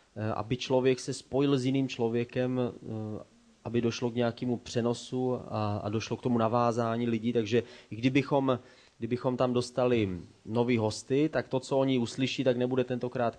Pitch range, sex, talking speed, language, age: 110-125 Hz, male, 150 wpm, Czech, 20-39